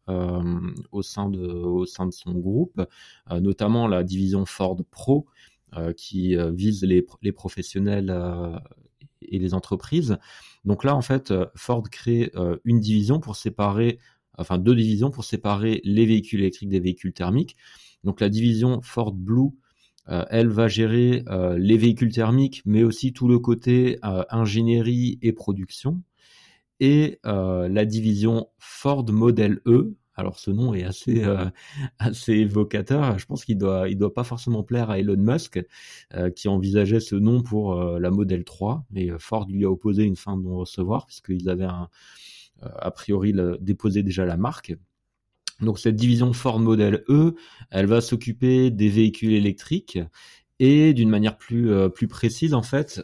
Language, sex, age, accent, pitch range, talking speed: French, male, 30-49, French, 95-120 Hz, 170 wpm